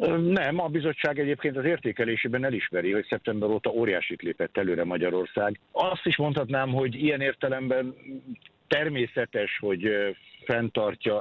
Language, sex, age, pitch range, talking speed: Hungarian, male, 60-79, 100-120 Hz, 125 wpm